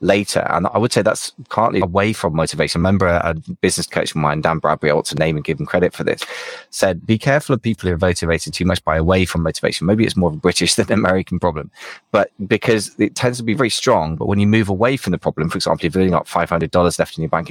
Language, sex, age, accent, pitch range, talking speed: English, male, 20-39, British, 85-100 Hz, 270 wpm